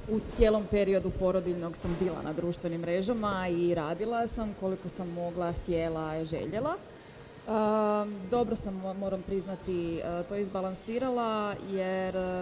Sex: female